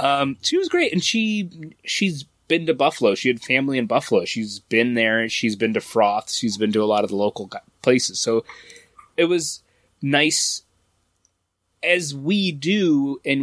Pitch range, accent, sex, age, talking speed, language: 105-140 Hz, American, male, 20-39, 175 wpm, English